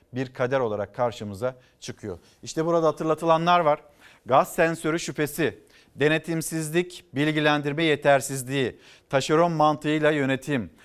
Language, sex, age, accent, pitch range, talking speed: Turkish, male, 50-69, native, 120-155 Hz, 100 wpm